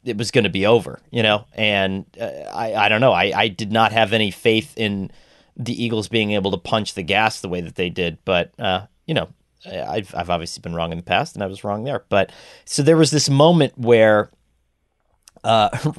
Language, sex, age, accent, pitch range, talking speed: English, male, 30-49, American, 105-130 Hz, 225 wpm